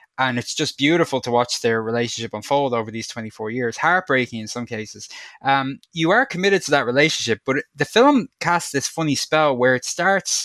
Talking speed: 200 wpm